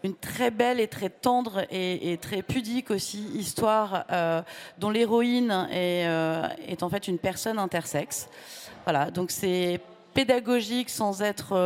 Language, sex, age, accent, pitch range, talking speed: French, female, 30-49, French, 175-210 Hz, 150 wpm